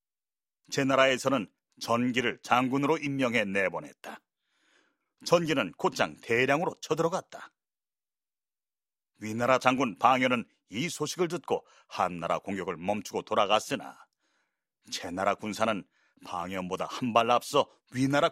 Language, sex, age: Korean, male, 40-59